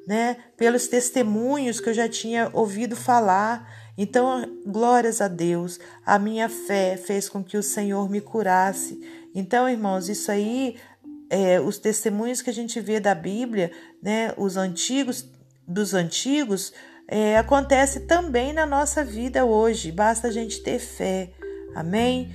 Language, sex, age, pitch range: Portuguese, female, 50-69, 185-225 Hz